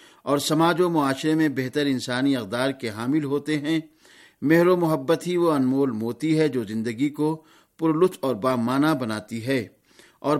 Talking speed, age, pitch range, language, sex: 165 wpm, 50-69, 130-160 Hz, Urdu, male